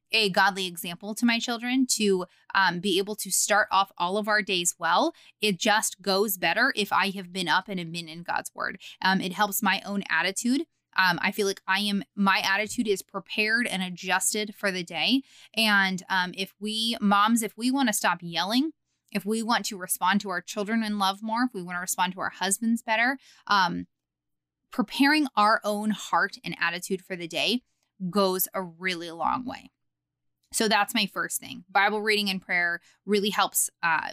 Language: English